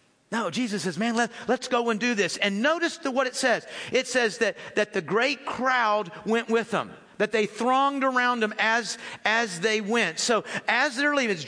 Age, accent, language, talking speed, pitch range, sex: 50-69, American, English, 210 wpm, 175-235 Hz, male